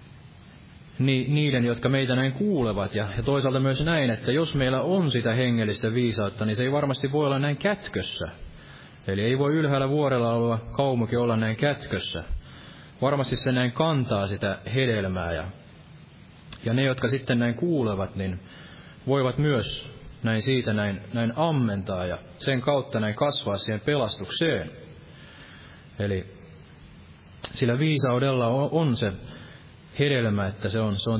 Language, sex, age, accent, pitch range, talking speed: Finnish, male, 30-49, native, 100-135 Hz, 140 wpm